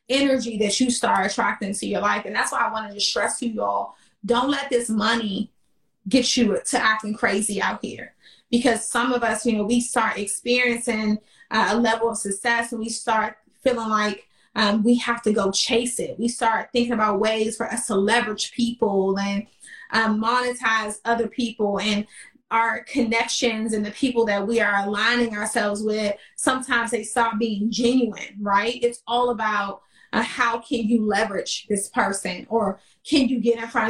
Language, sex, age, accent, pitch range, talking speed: English, female, 30-49, American, 210-240 Hz, 180 wpm